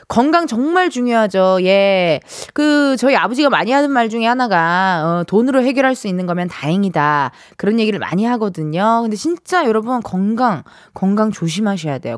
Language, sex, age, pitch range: Korean, female, 20-39, 185-305 Hz